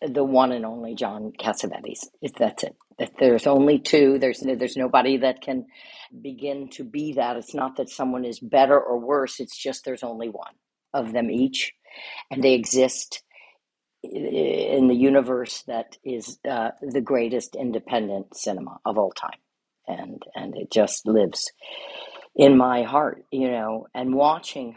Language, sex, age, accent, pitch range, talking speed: English, female, 50-69, American, 115-150 Hz, 160 wpm